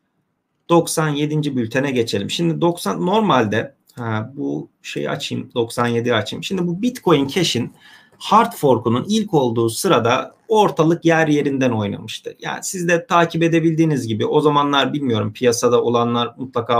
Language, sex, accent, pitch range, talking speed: Turkish, male, native, 130-165 Hz, 130 wpm